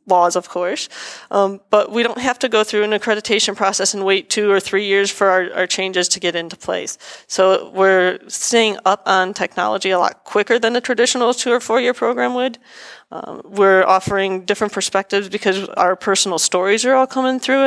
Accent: American